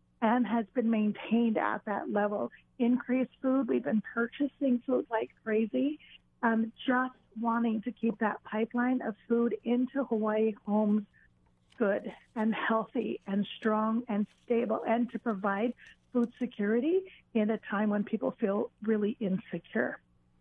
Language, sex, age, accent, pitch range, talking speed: English, female, 40-59, American, 215-250 Hz, 140 wpm